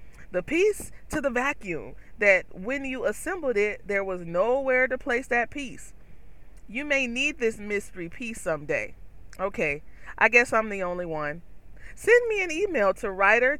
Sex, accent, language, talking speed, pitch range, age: female, American, English, 165 wpm, 190-270 Hz, 30-49